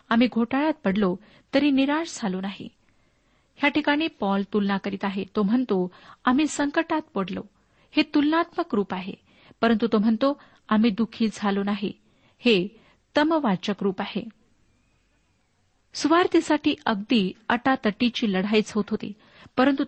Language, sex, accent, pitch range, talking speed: Marathi, female, native, 205-260 Hz, 120 wpm